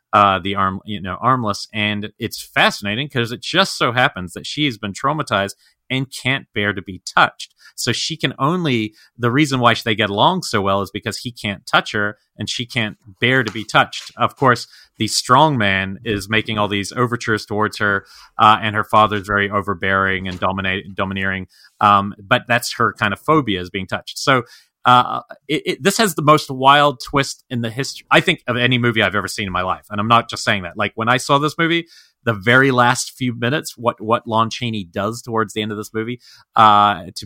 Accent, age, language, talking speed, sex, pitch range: American, 30-49, English, 215 wpm, male, 100-125 Hz